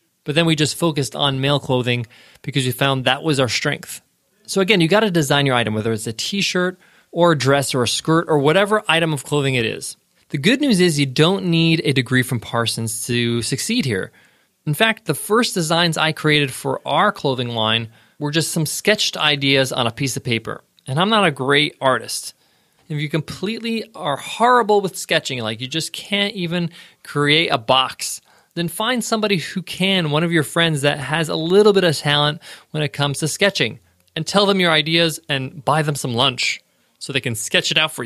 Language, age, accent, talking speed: English, 20-39, American, 210 wpm